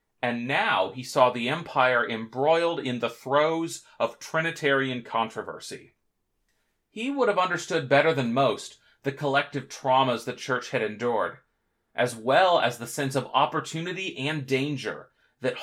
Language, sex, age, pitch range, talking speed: English, male, 30-49, 120-155 Hz, 140 wpm